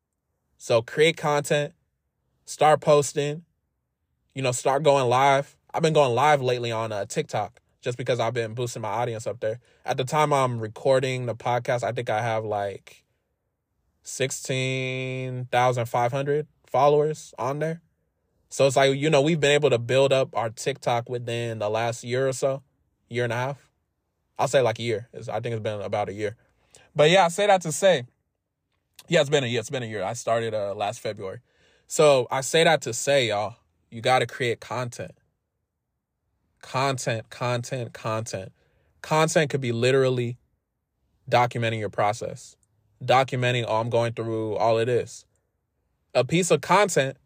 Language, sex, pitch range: English, male, 115-140 Hz